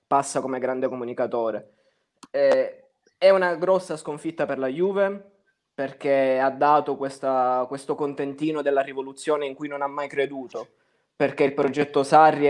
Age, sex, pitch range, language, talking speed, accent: 20-39, male, 135-165 Hz, Italian, 140 wpm, native